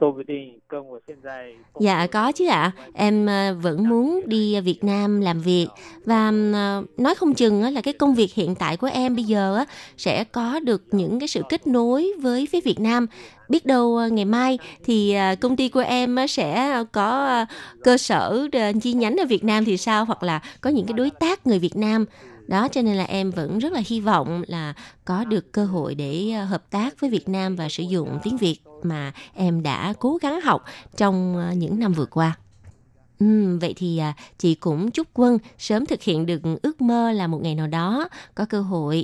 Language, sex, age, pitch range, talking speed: Vietnamese, female, 20-39, 175-240 Hz, 195 wpm